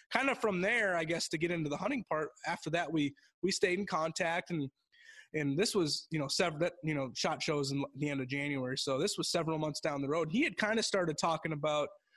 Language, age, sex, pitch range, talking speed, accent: English, 20-39, male, 140-175 Hz, 245 wpm, American